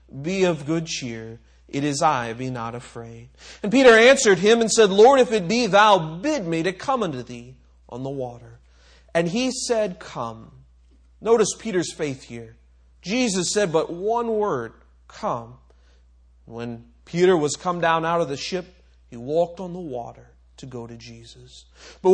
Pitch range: 120-195 Hz